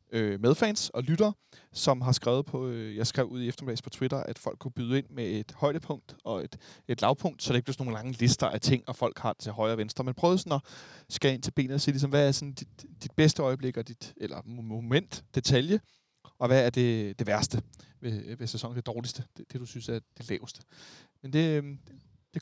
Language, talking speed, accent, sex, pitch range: Danish, 235 wpm, native, male, 120-155 Hz